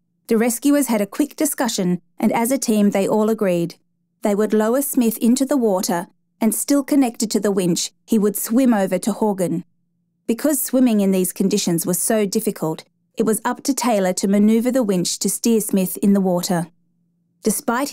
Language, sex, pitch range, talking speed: English, female, 180-235 Hz, 185 wpm